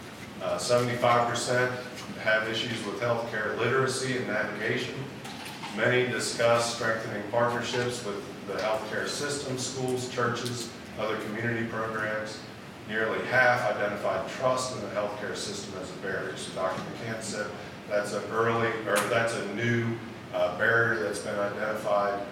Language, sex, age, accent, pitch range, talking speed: English, male, 40-59, American, 100-120 Hz, 130 wpm